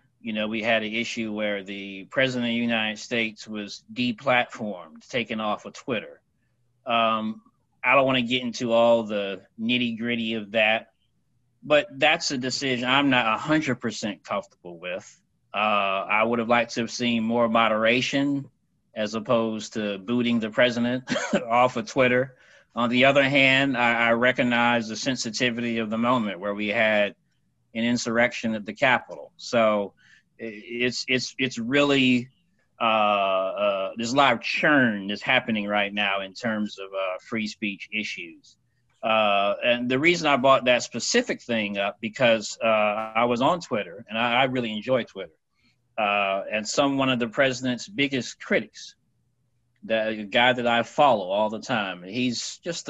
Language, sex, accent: English, male, American